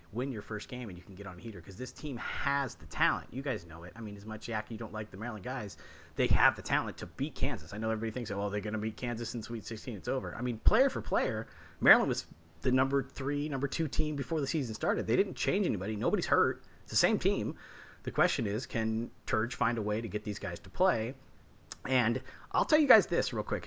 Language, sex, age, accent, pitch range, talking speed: English, male, 30-49, American, 100-130 Hz, 260 wpm